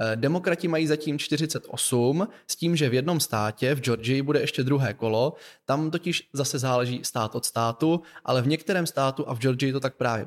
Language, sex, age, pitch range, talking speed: Czech, male, 20-39, 120-145 Hz, 195 wpm